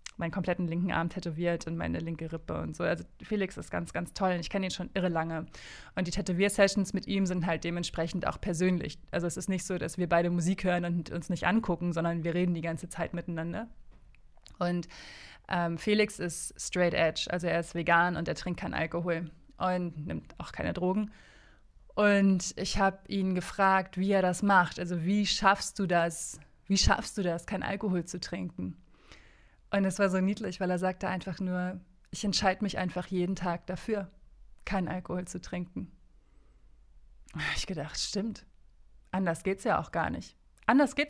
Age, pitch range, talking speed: 20-39, 170-195 Hz, 190 wpm